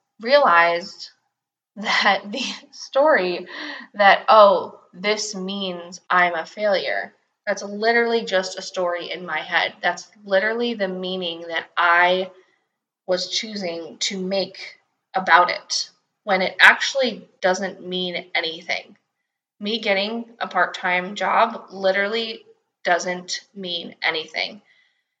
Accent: American